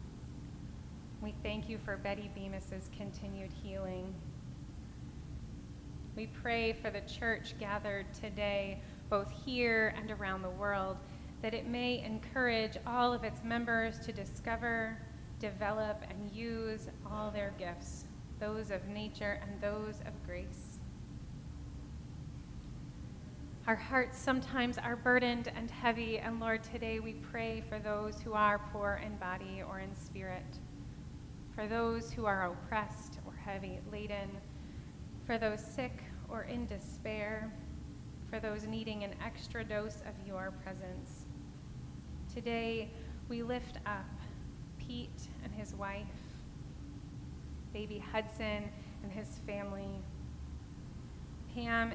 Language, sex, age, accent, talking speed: English, female, 30-49, American, 120 wpm